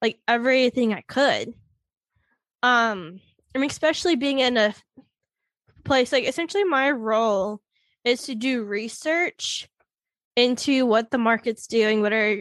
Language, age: English, 10-29